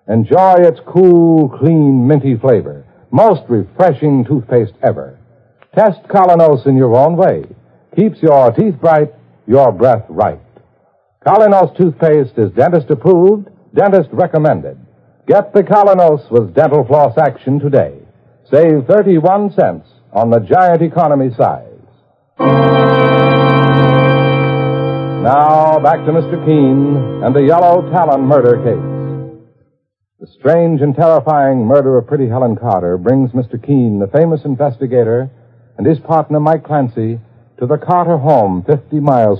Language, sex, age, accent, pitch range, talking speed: English, male, 60-79, American, 115-155 Hz, 125 wpm